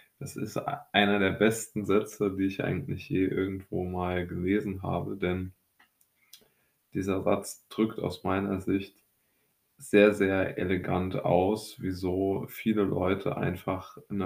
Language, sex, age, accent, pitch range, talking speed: German, male, 20-39, German, 90-100 Hz, 120 wpm